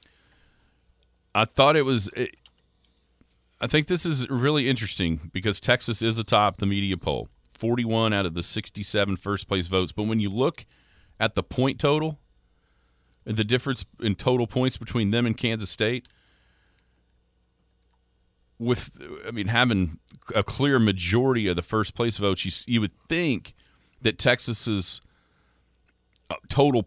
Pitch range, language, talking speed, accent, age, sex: 85-120 Hz, English, 140 wpm, American, 40-59, male